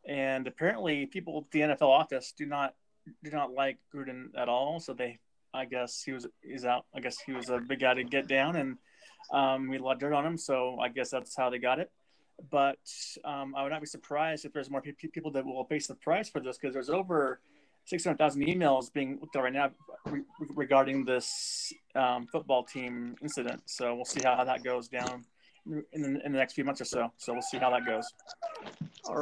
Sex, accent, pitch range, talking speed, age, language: male, American, 130-160 Hz, 220 wpm, 20-39, English